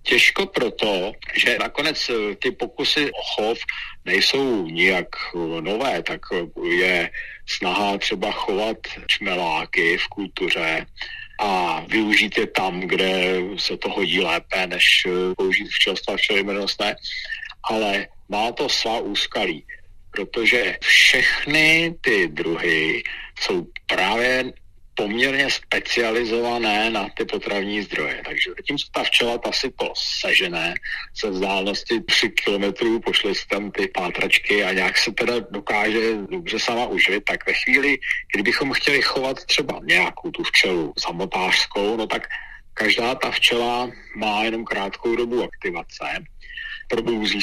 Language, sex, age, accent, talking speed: Czech, male, 50-69, native, 120 wpm